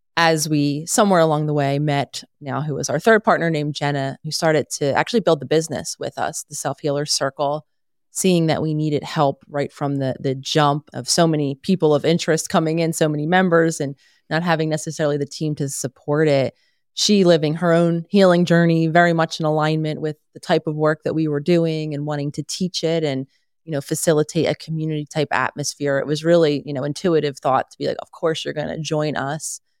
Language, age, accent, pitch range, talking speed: English, 30-49, American, 145-170 Hz, 210 wpm